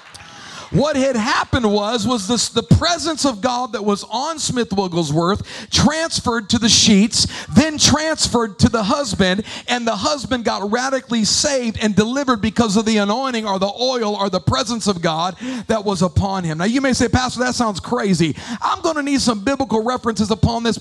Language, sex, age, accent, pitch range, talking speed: English, male, 40-59, American, 200-260 Hz, 185 wpm